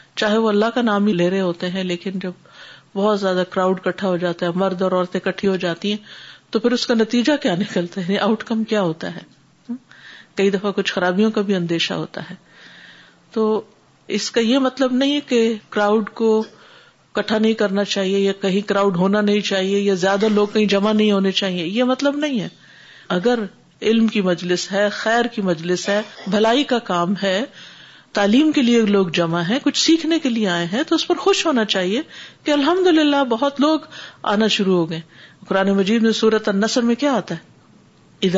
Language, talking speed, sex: Urdu, 200 wpm, female